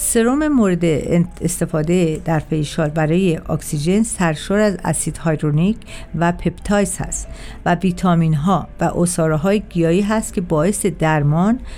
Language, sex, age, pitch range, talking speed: Persian, female, 50-69, 160-195 Hz, 125 wpm